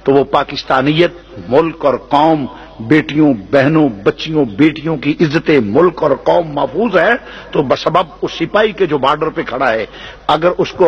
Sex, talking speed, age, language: male, 165 wpm, 50-69, Urdu